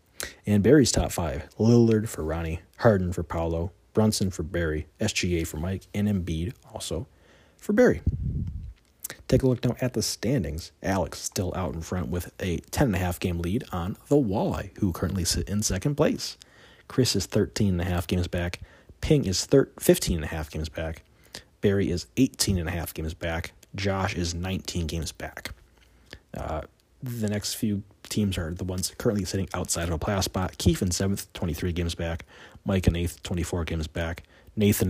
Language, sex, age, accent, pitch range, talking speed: English, male, 30-49, American, 85-105 Hz, 165 wpm